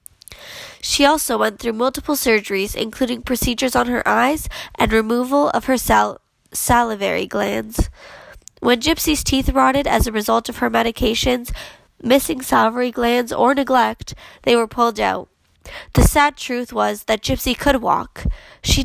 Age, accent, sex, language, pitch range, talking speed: 10-29, American, female, English, 220-260 Hz, 145 wpm